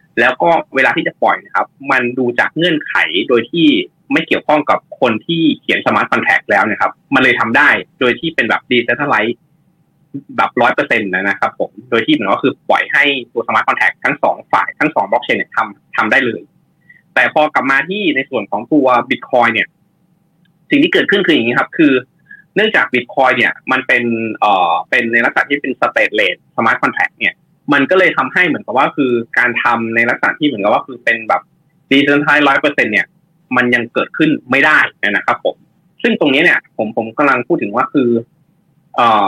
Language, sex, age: Thai, male, 20-39